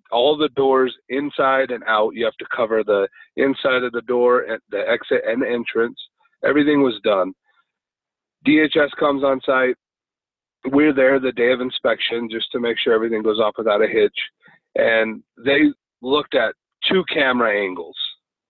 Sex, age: male, 40-59